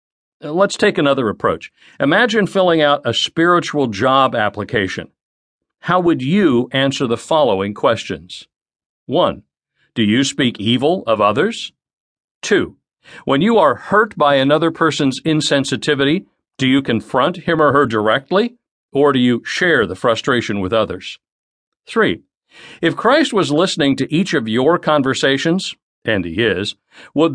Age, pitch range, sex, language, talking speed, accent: 50-69, 120-180 Hz, male, English, 140 wpm, American